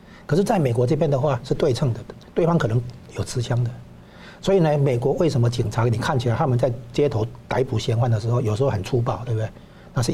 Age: 60-79